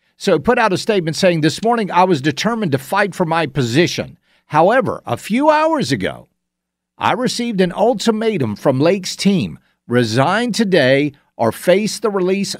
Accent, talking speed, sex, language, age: American, 165 wpm, male, English, 50-69